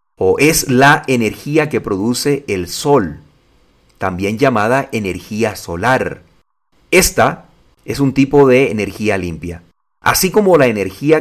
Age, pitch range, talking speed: 40-59, 100-140 Hz, 125 wpm